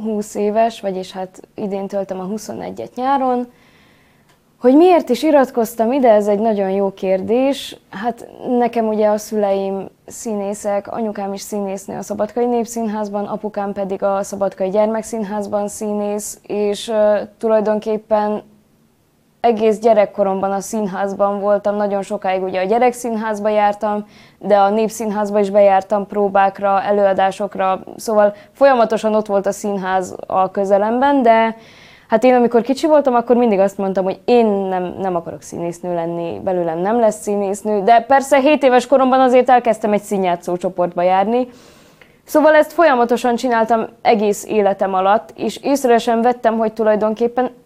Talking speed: 140 wpm